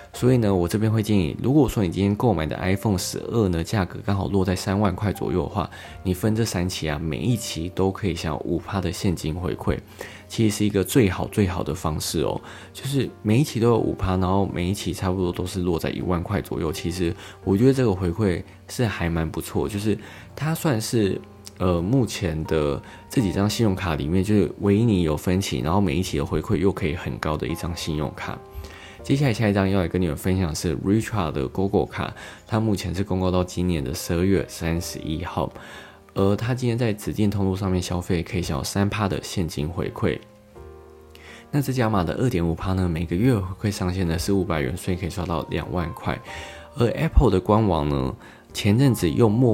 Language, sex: Chinese, male